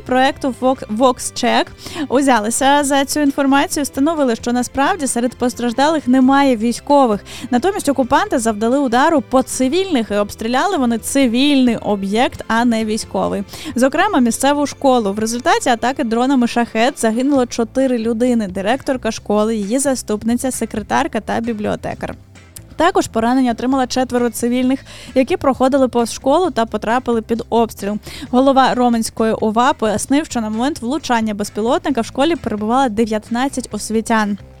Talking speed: 125 wpm